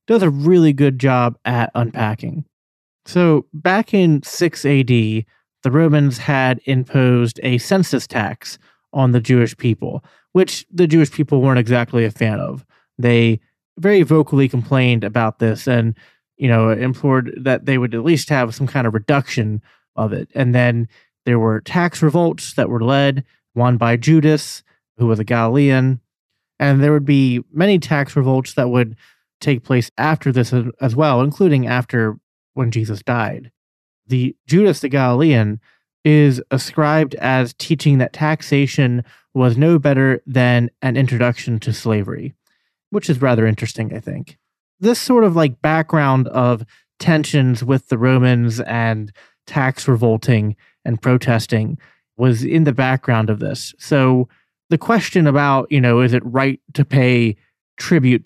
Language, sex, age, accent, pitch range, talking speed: English, male, 30-49, American, 120-150 Hz, 150 wpm